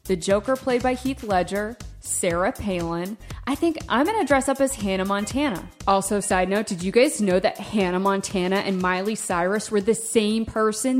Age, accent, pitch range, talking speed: 30-49, American, 190-255 Hz, 190 wpm